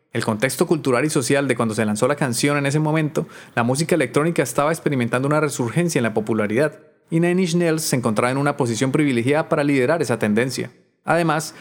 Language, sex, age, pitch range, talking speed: Spanish, male, 30-49, 120-150 Hz, 195 wpm